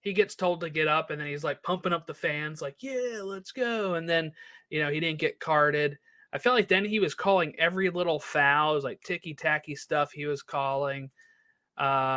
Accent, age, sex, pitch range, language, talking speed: American, 20-39, male, 145-200 Hz, English, 225 wpm